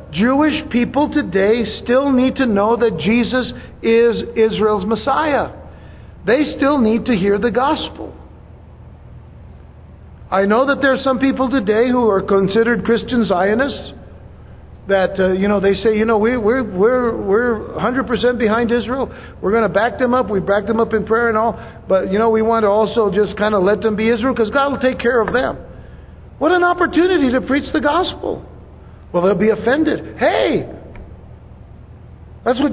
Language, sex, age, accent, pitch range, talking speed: English, male, 60-79, American, 200-260 Hz, 175 wpm